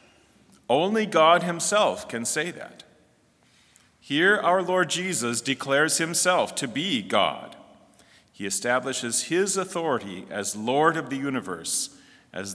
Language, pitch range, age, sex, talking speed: English, 130-180 Hz, 40-59, male, 120 wpm